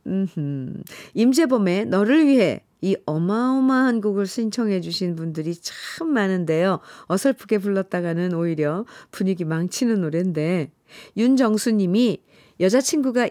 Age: 40-59